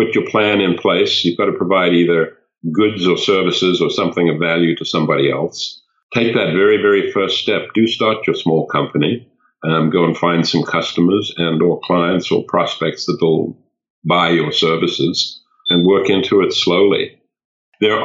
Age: 50-69